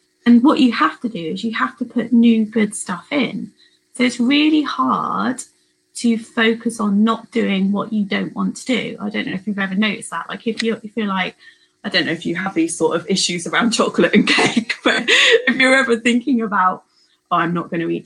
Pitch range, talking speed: 195-235 Hz, 225 wpm